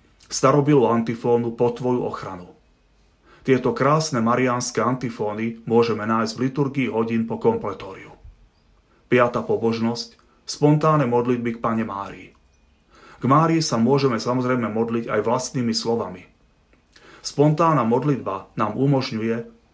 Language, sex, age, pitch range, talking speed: Slovak, male, 30-49, 115-130 Hz, 110 wpm